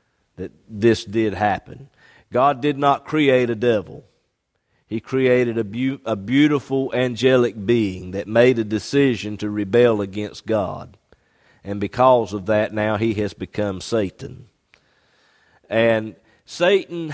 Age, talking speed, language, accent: 50-69, 125 wpm, English, American